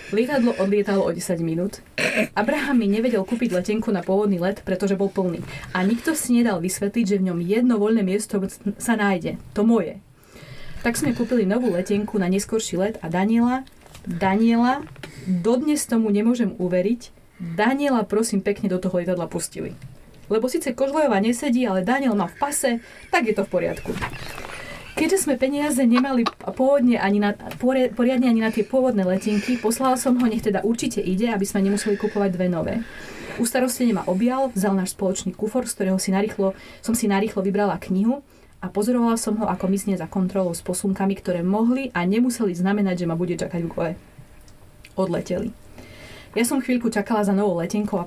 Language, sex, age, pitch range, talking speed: Slovak, female, 30-49, 190-240 Hz, 170 wpm